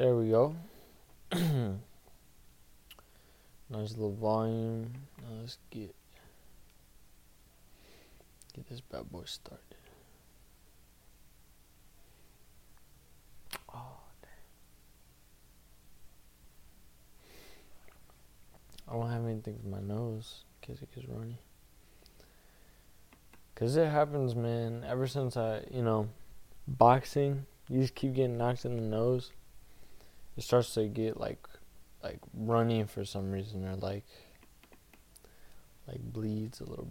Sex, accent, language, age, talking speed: male, American, English, 20-39, 100 wpm